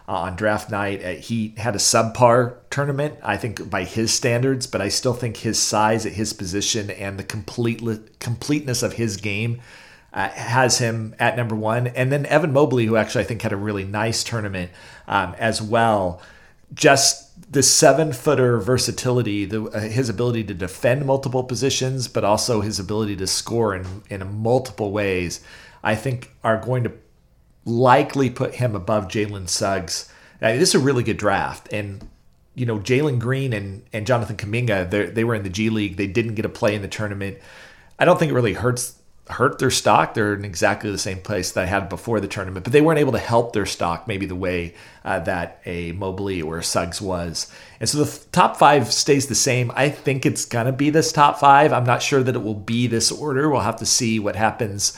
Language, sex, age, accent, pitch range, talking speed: English, male, 40-59, American, 100-125 Hz, 200 wpm